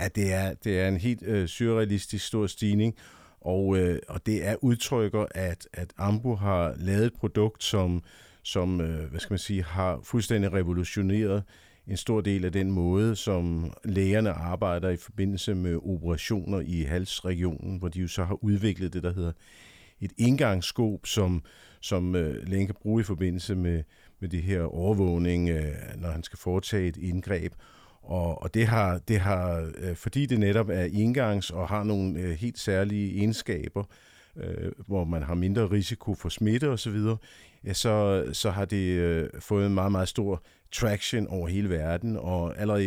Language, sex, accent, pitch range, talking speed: Danish, male, native, 90-105 Hz, 165 wpm